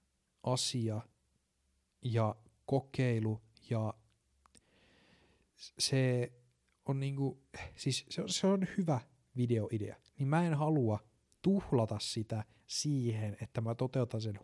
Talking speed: 105 wpm